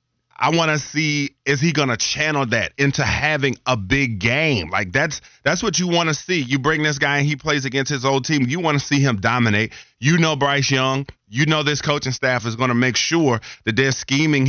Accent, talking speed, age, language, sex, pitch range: American, 235 wpm, 30-49, English, male, 115-140 Hz